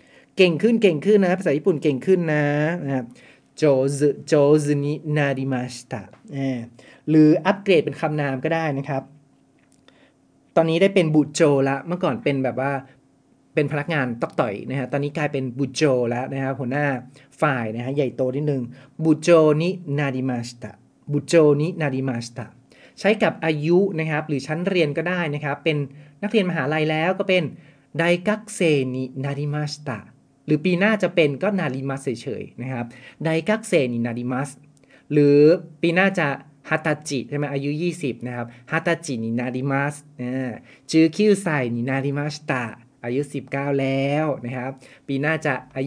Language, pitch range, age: Japanese, 130-155 Hz, 30-49